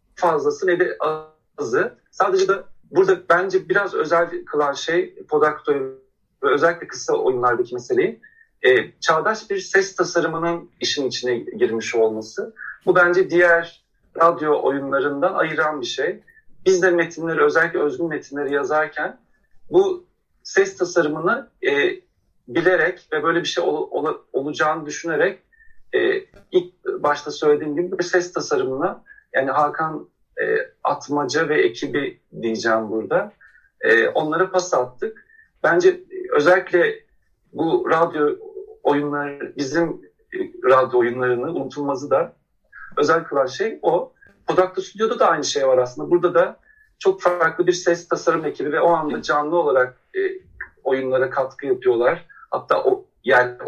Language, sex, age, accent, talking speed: Turkish, male, 50-69, native, 130 wpm